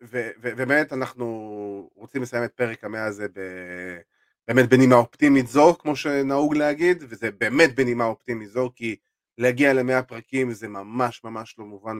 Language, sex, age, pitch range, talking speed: Hebrew, male, 30-49, 105-135 Hz, 150 wpm